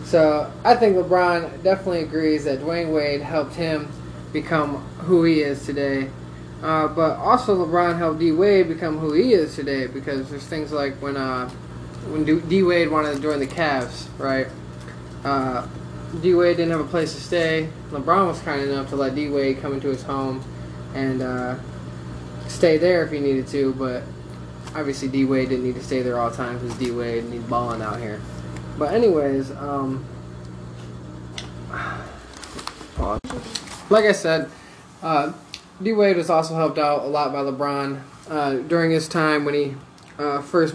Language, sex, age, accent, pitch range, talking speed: English, male, 20-39, American, 130-155 Hz, 170 wpm